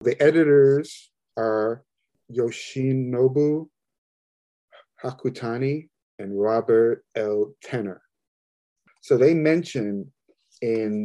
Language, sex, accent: English, male, American